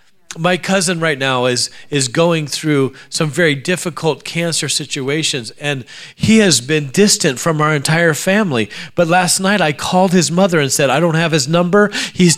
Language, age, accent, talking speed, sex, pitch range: English, 40-59, American, 180 wpm, male, 170-240 Hz